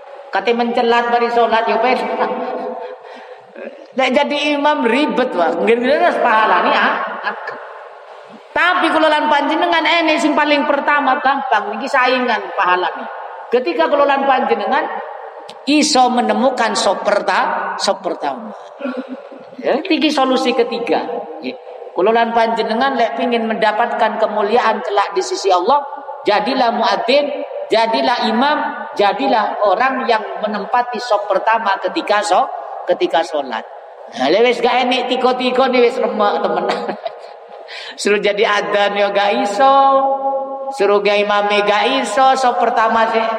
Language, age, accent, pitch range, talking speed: Indonesian, 40-59, native, 210-275 Hz, 115 wpm